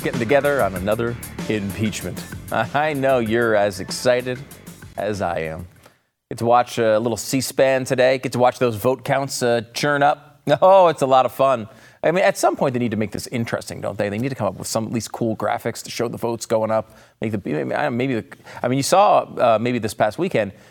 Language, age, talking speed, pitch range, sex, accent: English, 30-49, 225 wpm, 105-135 Hz, male, American